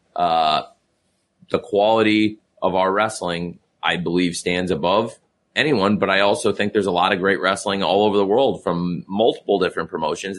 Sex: male